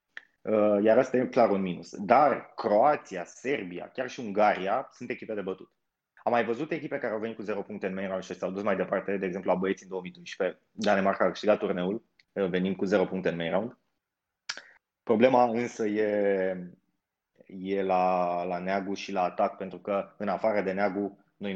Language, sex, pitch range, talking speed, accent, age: Romanian, male, 95-115 Hz, 190 wpm, native, 20-39